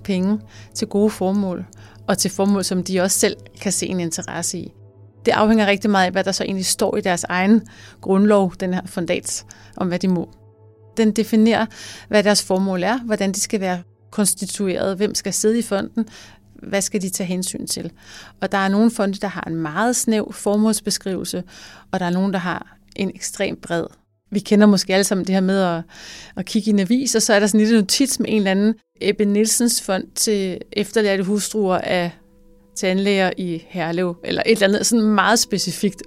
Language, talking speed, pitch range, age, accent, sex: English, 205 wpm, 180-210 Hz, 30-49, Danish, female